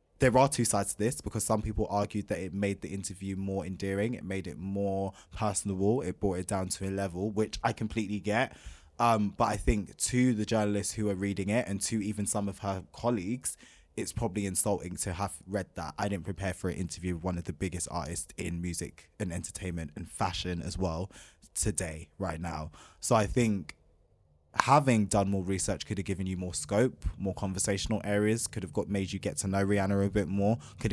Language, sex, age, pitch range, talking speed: English, male, 20-39, 90-105 Hz, 215 wpm